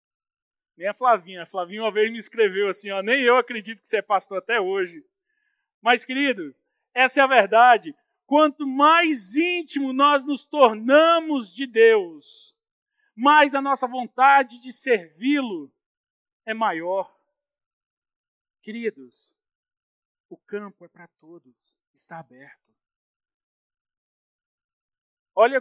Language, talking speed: Portuguese, 120 wpm